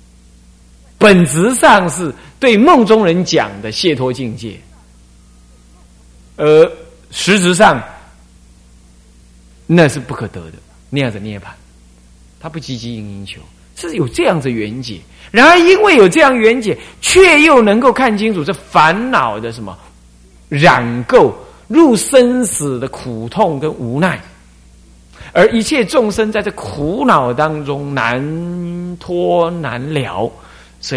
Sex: male